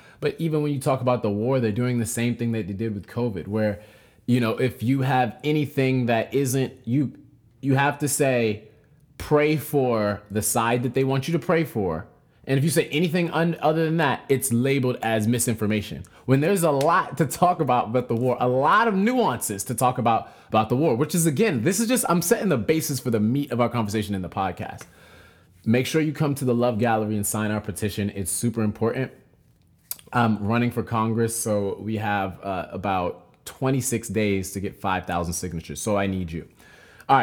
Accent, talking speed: American, 210 wpm